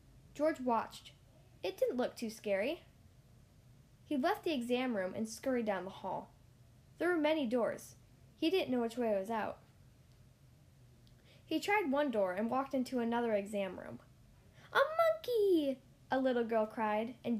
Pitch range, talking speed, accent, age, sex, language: 195-290 Hz, 160 wpm, American, 10-29, female, English